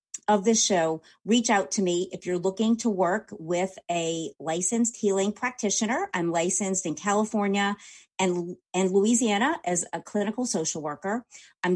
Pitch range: 170-200 Hz